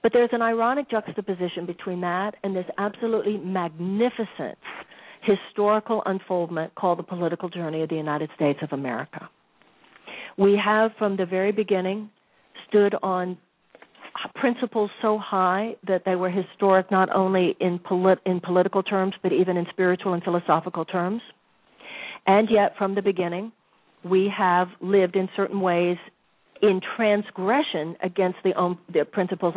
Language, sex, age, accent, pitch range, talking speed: English, female, 50-69, American, 175-200 Hz, 140 wpm